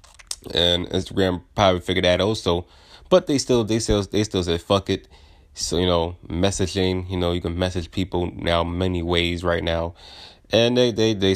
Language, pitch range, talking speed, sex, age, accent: English, 85-110 Hz, 185 wpm, male, 30-49, American